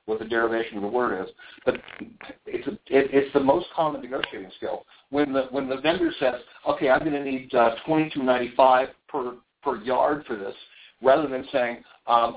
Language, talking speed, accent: English, 195 wpm, American